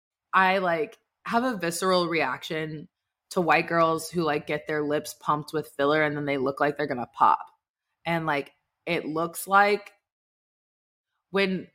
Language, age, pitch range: English, 20-39, 165-210 Hz